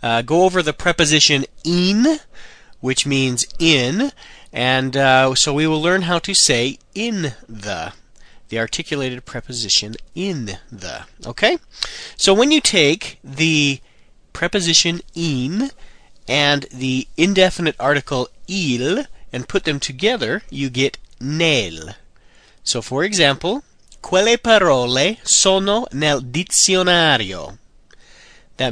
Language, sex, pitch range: Italian, male, 125-175 Hz